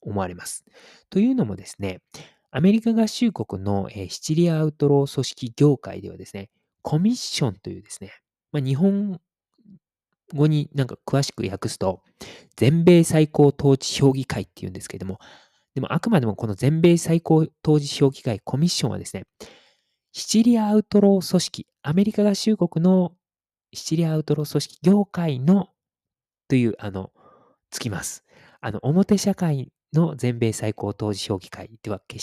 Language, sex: Japanese, male